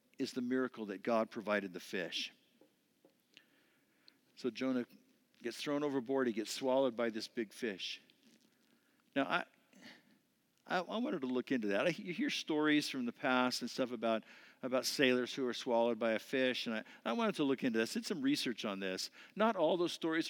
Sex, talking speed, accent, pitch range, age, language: male, 190 wpm, American, 130-200 Hz, 50-69, English